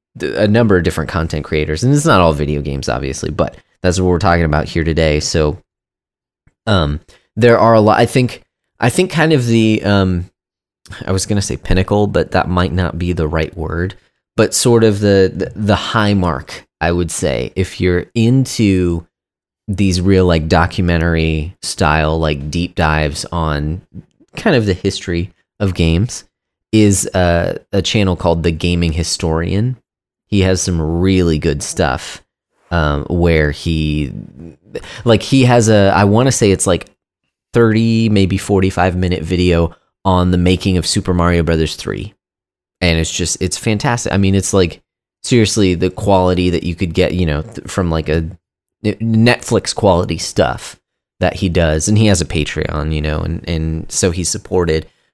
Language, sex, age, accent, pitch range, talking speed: English, male, 20-39, American, 80-105 Hz, 170 wpm